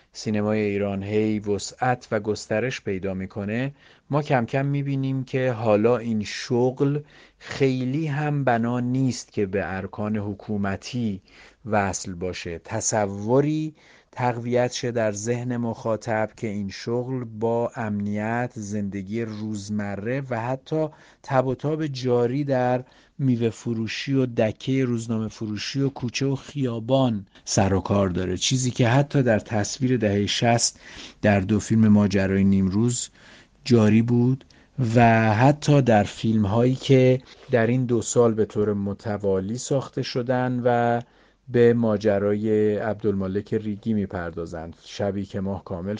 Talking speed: 125 wpm